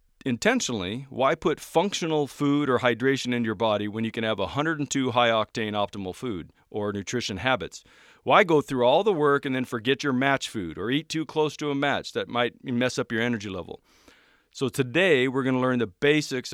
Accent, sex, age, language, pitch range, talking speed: American, male, 40-59, English, 120-150 Hz, 200 wpm